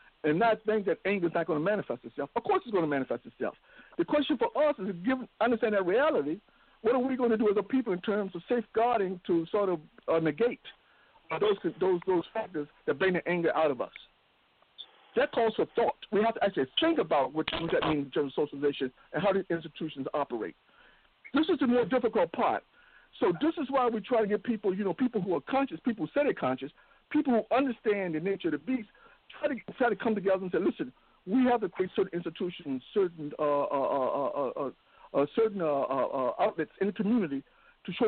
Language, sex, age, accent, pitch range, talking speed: English, male, 60-79, American, 155-235 Hz, 230 wpm